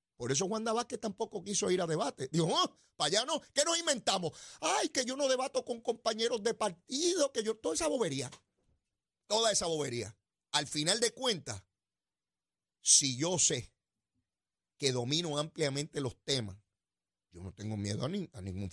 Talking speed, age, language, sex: 175 wpm, 30-49, Spanish, male